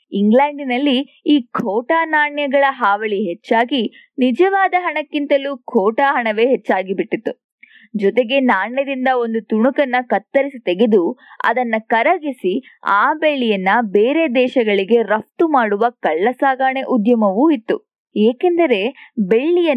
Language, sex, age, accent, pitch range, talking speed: Kannada, female, 20-39, native, 220-290 Hz, 95 wpm